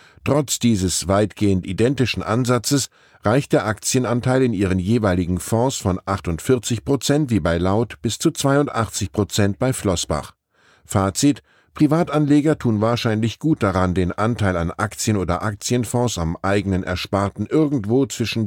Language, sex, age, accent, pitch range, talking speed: German, male, 10-29, German, 95-130 Hz, 135 wpm